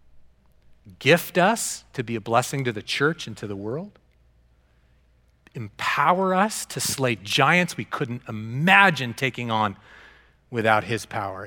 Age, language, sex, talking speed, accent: 40-59, English, male, 135 wpm, American